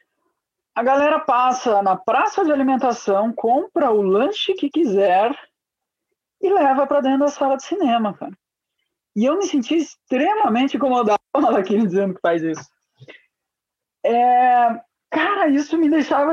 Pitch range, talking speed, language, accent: 205-305 Hz, 145 wpm, Portuguese, Brazilian